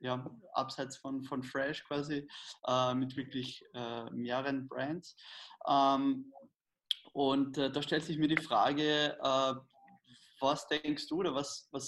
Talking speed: 140 wpm